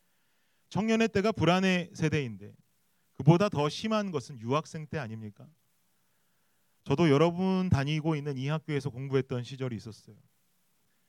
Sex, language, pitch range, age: male, Korean, 115-160 Hz, 30-49